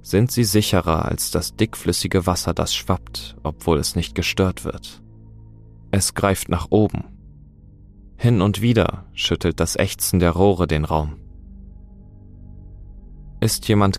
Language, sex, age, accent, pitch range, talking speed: German, male, 30-49, German, 80-100 Hz, 130 wpm